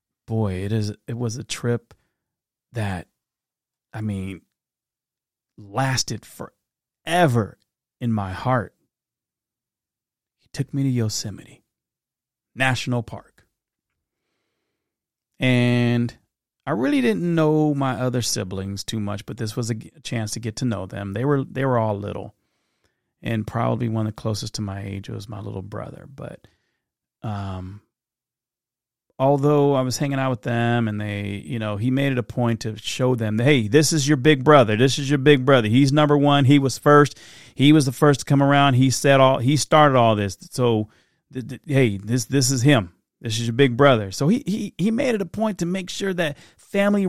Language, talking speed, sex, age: English, 180 wpm, male, 30-49